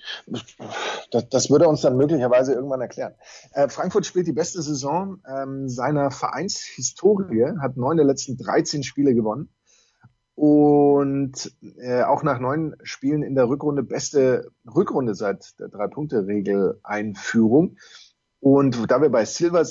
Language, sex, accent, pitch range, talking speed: German, male, German, 125-155 Hz, 135 wpm